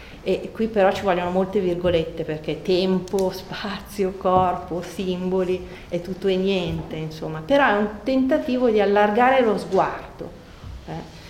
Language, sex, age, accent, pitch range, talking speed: Italian, female, 40-59, native, 180-215 Hz, 140 wpm